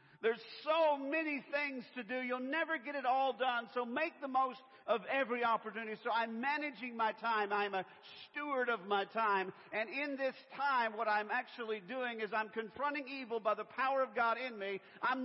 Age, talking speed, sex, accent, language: 50-69, 195 wpm, male, American, English